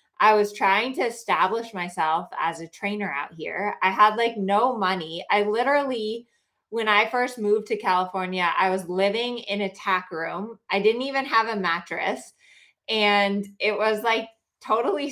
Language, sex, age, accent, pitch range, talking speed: English, female, 20-39, American, 185-220 Hz, 165 wpm